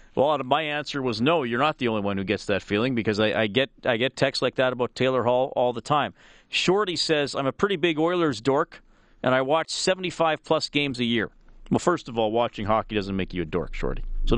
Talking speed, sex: 240 wpm, male